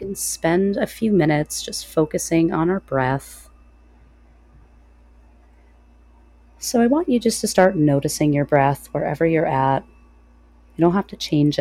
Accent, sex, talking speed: American, female, 145 wpm